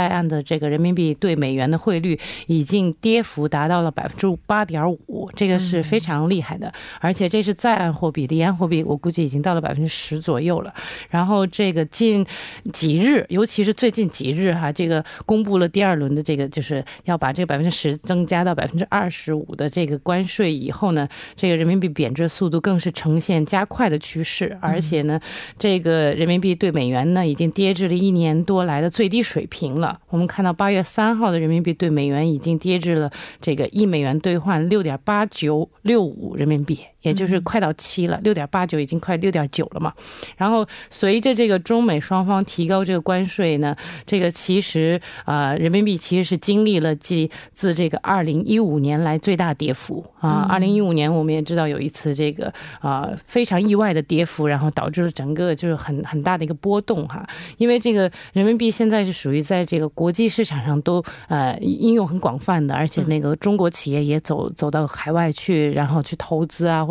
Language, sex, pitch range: Korean, female, 155-195 Hz